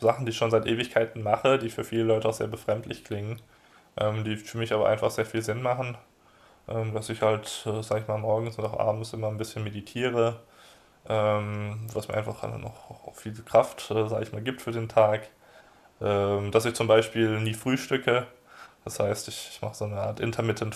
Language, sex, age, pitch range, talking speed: German, male, 20-39, 105-115 Hz, 205 wpm